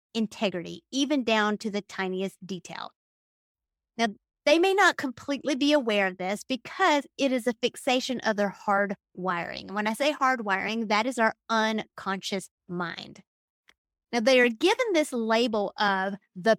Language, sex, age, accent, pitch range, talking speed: English, female, 30-49, American, 200-270 Hz, 155 wpm